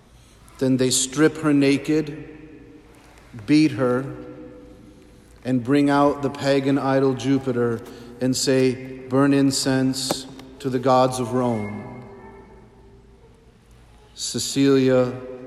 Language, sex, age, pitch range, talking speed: English, male, 40-59, 125-135 Hz, 95 wpm